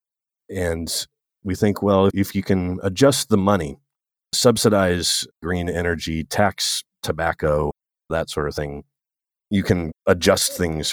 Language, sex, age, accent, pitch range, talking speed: English, male, 30-49, American, 75-105 Hz, 125 wpm